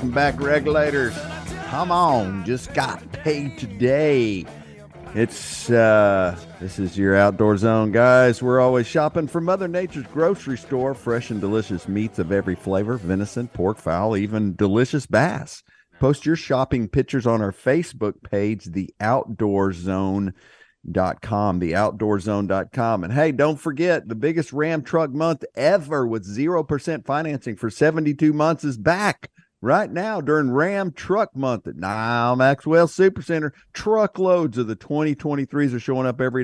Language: English